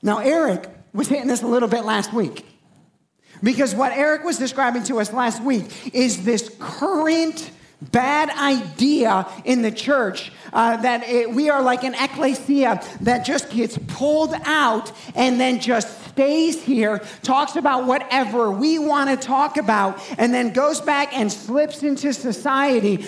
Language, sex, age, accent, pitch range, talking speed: English, male, 40-59, American, 230-280 Hz, 155 wpm